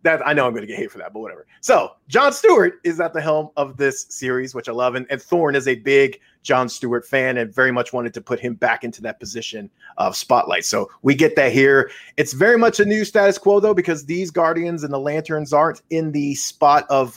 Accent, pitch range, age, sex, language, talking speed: American, 125-160 Hz, 30-49, male, English, 250 wpm